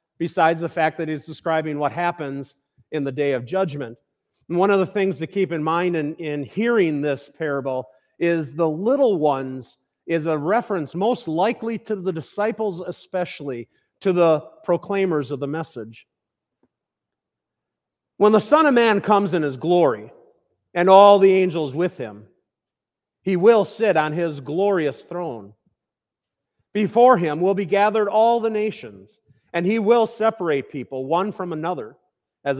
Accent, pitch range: American, 150-205 Hz